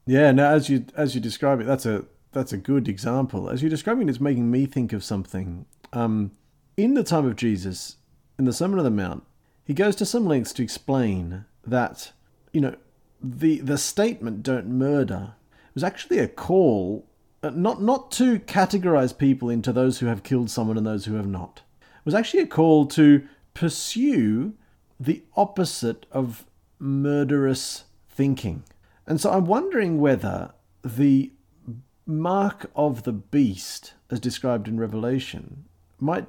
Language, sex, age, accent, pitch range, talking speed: English, male, 40-59, Australian, 115-160 Hz, 165 wpm